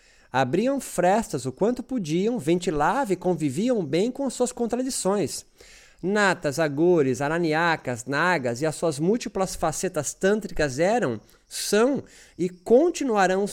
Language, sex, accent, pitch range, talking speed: Portuguese, male, Brazilian, 150-220 Hz, 115 wpm